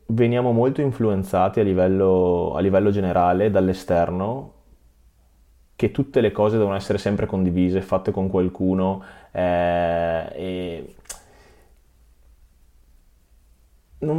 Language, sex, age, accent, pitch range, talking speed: Italian, male, 20-39, native, 90-105 Hz, 95 wpm